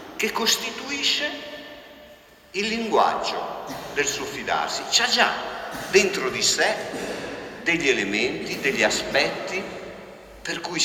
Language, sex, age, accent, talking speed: Italian, male, 50-69, native, 100 wpm